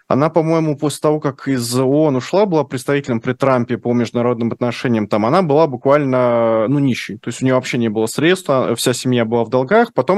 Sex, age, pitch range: male, 20-39, 115-140 Hz